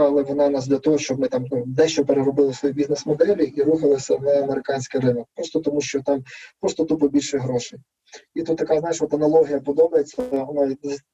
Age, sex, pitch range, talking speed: 20-39, male, 140-185 Hz, 170 wpm